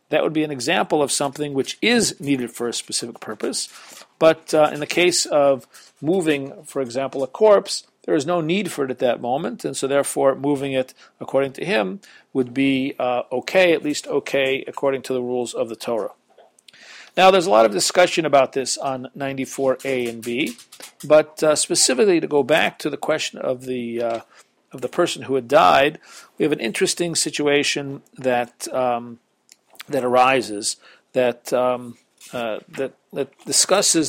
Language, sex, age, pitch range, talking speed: English, male, 50-69, 130-165 Hz, 180 wpm